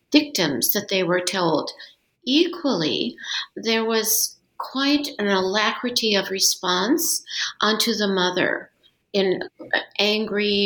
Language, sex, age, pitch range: English, female, 50-69, 190-260 Hz